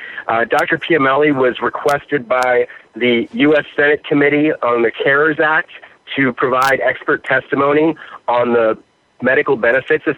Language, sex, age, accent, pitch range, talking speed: English, male, 40-59, American, 130-175 Hz, 135 wpm